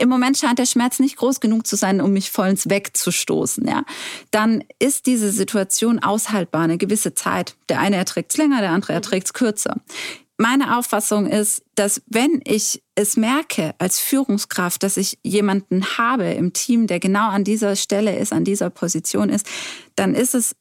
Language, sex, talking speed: German, female, 180 wpm